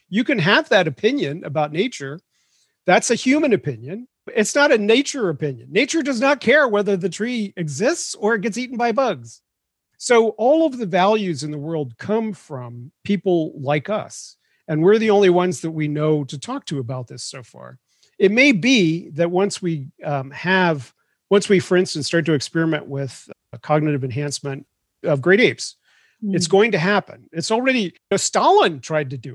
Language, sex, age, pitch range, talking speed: English, male, 40-59, 145-205 Hz, 190 wpm